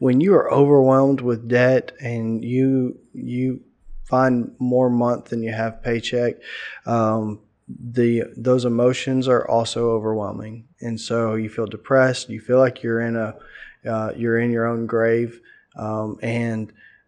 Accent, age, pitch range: American, 20-39, 110-120 Hz